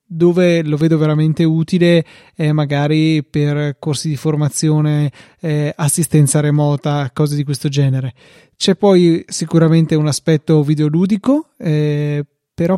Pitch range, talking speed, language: 145-160 Hz, 120 wpm, Italian